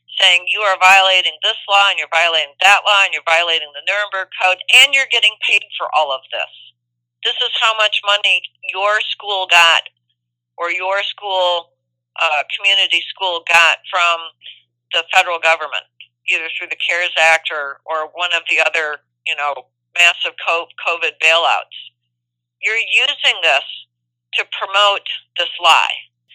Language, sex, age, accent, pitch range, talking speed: English, female, 40-59, American, 140-200 Hz, 155 wpm